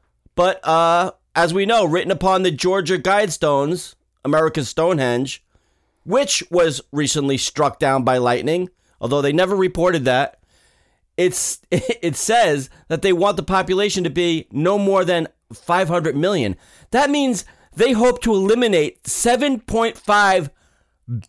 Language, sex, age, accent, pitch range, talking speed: English, male, 30-49, American, 160-215 Hz, 130 wpm